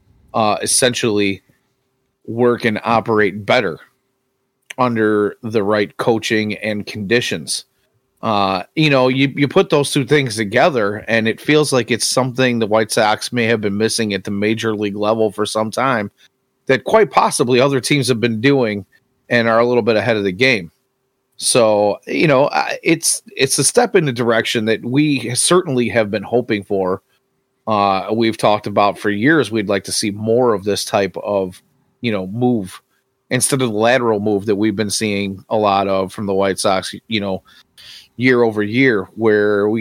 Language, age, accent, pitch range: English, 30-49, American, 105-130 Hz